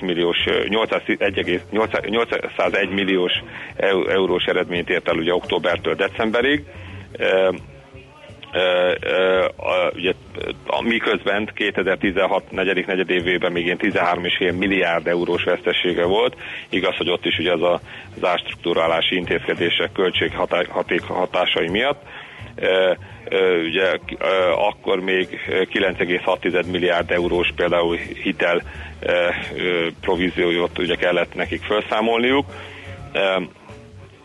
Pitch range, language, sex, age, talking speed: 90-110 Hz, Hungarian, male, 40-59, 100 wpm